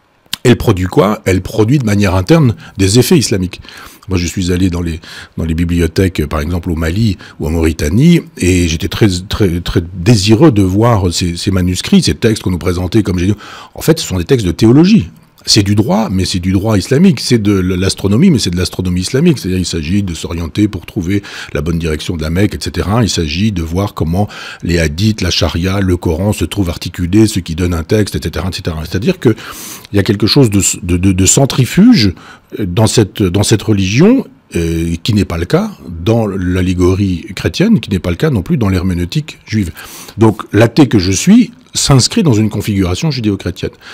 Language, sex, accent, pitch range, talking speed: French, male, French, 90-110 Hz, 205 wpm